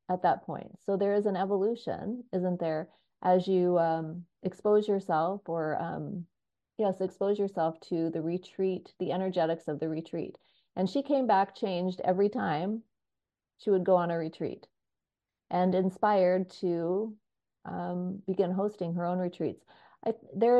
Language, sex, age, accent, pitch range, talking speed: English, female, 40-59, American, 170-200 Hz, 150 wpm